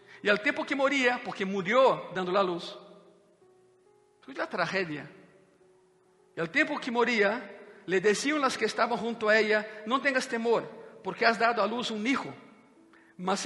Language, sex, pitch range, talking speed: Spanish, male, 185-220 Hz, 165 wpm